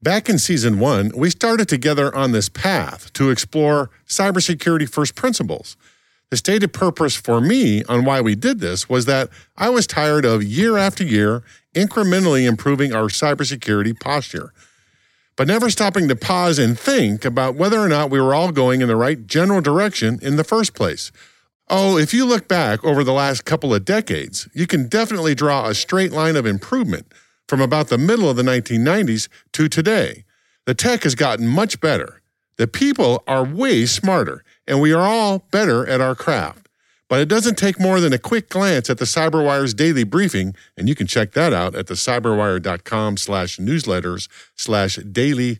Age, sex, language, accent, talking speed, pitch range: 50-69, male, English, American, 180 wpm, 120-190 Hz